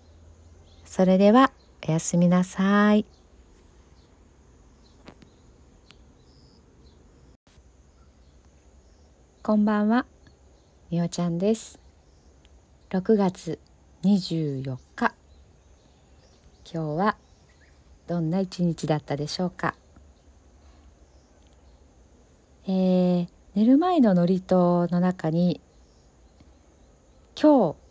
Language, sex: Japanese, female